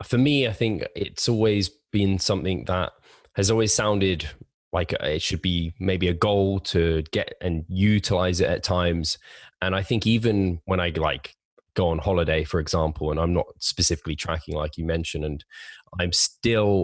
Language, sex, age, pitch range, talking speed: English, male, 20-39, 85-95 Hz, 175 wpm